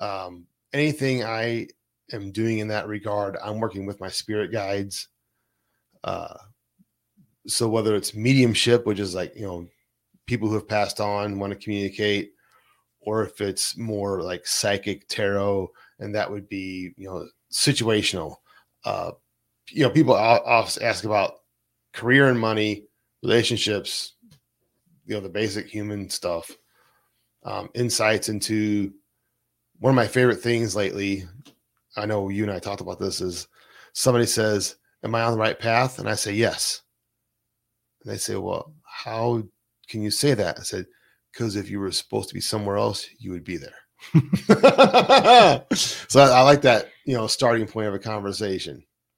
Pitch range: 100-120 Hz